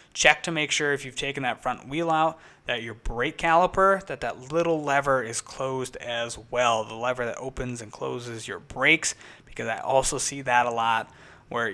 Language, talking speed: English, 200 wpm